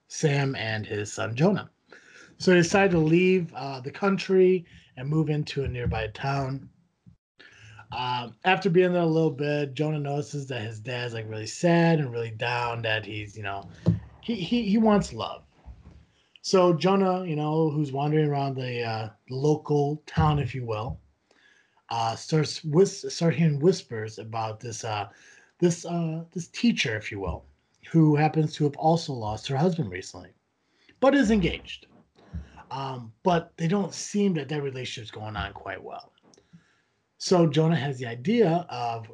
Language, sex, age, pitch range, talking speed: English, male, 30-49, 120-170 Hz, 165 wpm